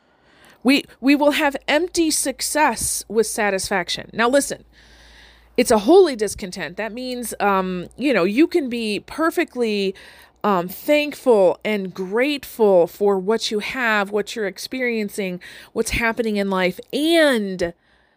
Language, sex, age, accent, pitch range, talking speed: English, female, 40-59, American, 190-245 Hz, 130 wpm